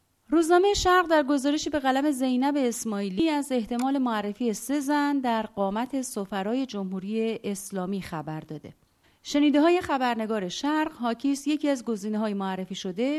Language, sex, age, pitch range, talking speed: Persian, female, 30-49, 195-270 Hz, 135 wpm